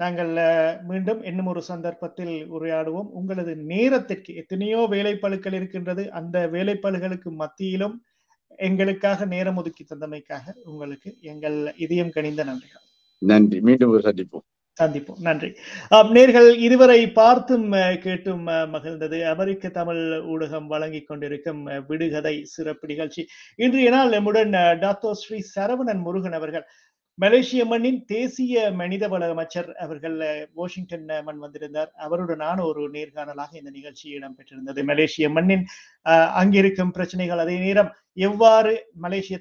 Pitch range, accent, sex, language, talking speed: 155-200 Hz, native, male, Tamil, 110 wpm